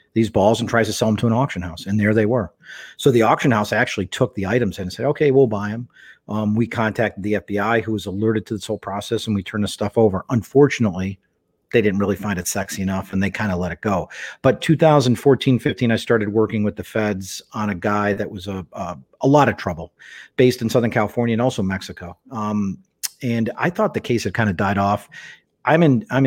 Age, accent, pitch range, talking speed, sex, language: 40-59, American, 105-125 Hz, 235 wpm, male, English